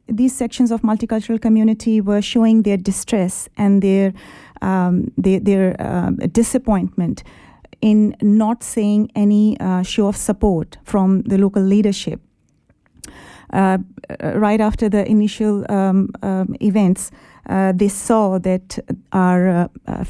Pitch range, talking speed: 190-215 Hz, 125 wpm